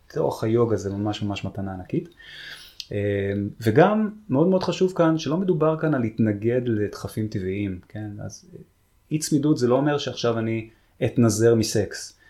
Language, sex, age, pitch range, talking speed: Hebrew, male, 20-39, 100-120 Hz, 140 wpm